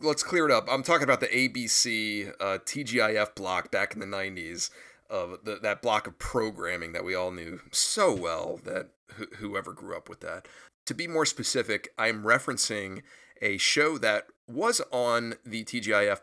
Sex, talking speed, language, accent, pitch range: male, 180 wpm, English, American, 100-130 Hz